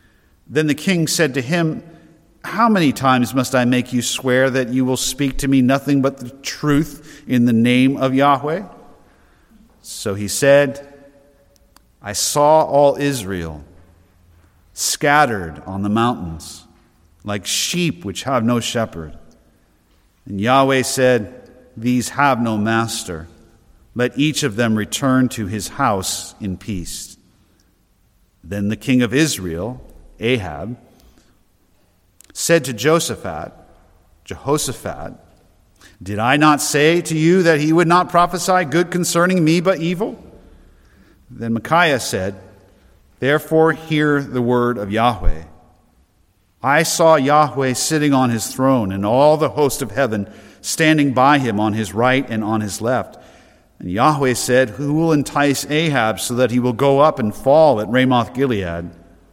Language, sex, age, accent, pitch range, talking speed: English, male, 50-69, American, 100-145 Hz, 140 wpm